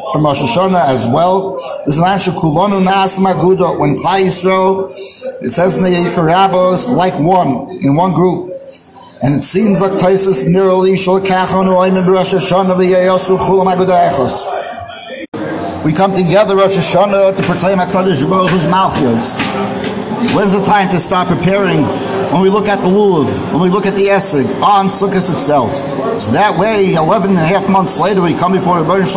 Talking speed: 170 wpm